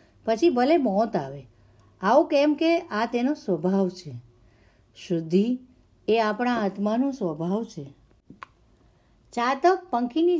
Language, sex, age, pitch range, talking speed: Gujarati, female, 50-69, 200-260 Hz, 110 wpm